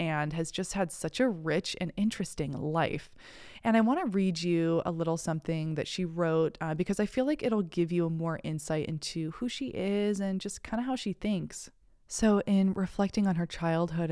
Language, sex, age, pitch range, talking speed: English, female, 20-39, 165-205 Hz, 205 wpm